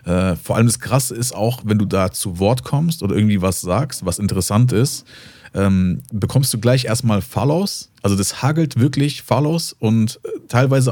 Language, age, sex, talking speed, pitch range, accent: German, 40-59, male, 180 wpm, 95-120 Hz, German